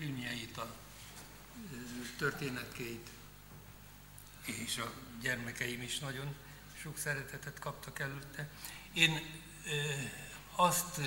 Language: Hungarian